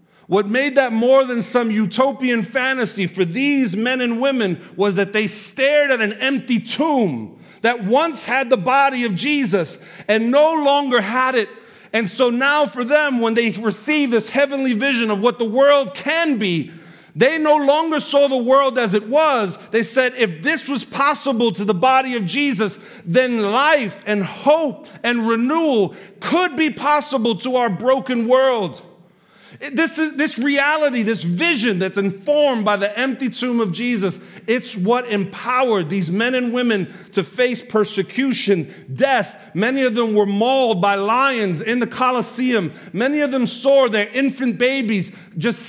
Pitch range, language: 210-270 Hz, English